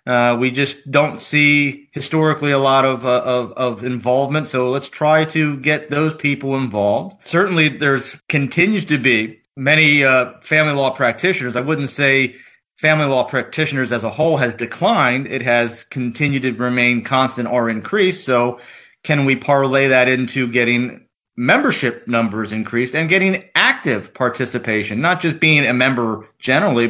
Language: English